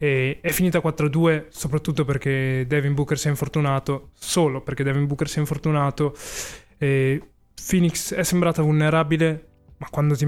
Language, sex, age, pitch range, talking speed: Italian, male, 20-39, 140-155 Hz, 150 wpm